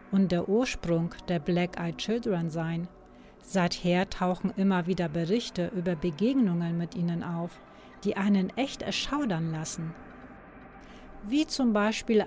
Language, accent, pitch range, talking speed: German, German, 170-215 Hz, 120 wpm